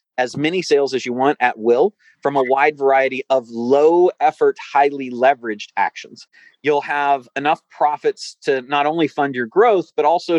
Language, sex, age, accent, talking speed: English, male, 30-49, American, 175 wpm